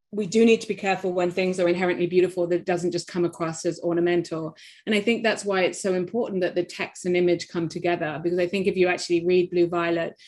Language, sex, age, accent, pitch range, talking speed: English, female, 30-49, British, 175-210 Hz, 245 wpm